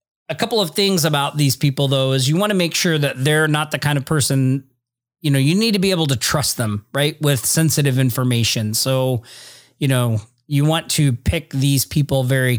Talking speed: 215 wpm